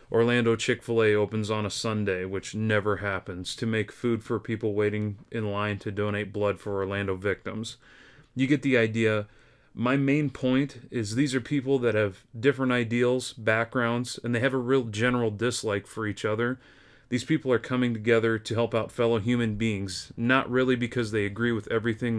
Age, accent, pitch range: 30-49, American, 105-125 Hz